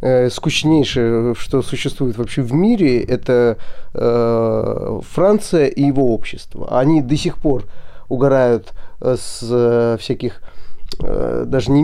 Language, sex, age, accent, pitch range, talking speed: Russian, male, 30-49, native, 130-180 Hz, 115 wpm